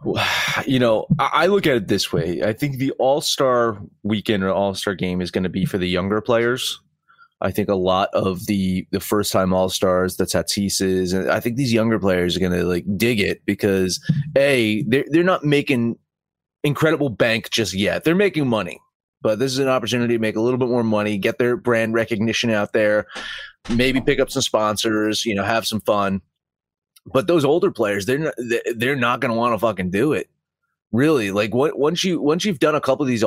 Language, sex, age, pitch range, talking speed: English, male, 30-49, 105-155 Hz, 215 wpm